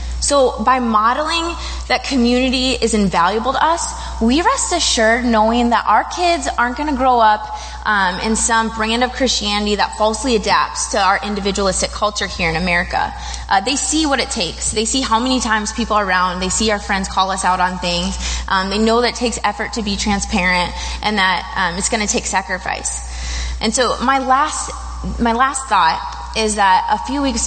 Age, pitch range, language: 20-39, 180-240 Hz, English